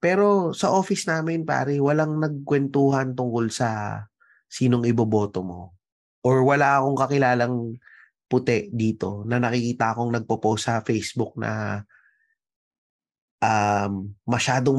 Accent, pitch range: native, 115-145 Hz